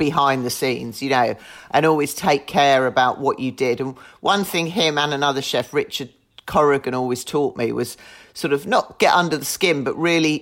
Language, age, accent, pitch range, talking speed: English, 40-59, British, 125-155 Hz, 200 wpm